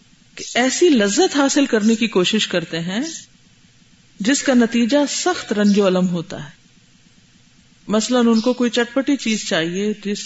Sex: female